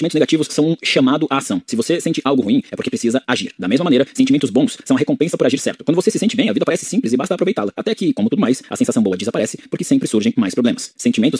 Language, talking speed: Portuguese, 285 wpm